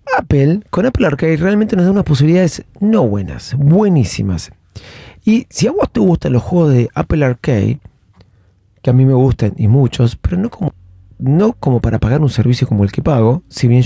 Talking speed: 195 wpm